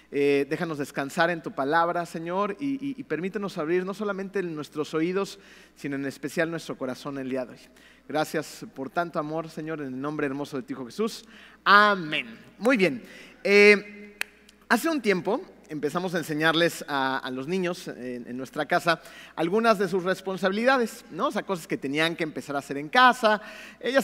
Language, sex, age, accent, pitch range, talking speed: Spanish, male, 40-59, Mexican, 155-220 Hz, 180 wpm